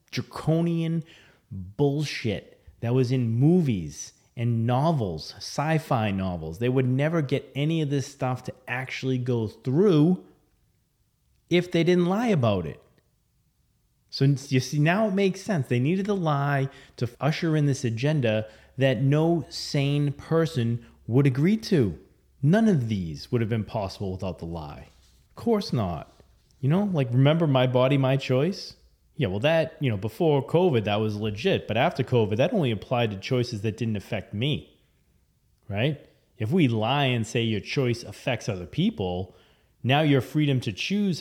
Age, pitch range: 30-49, 110-150 Hz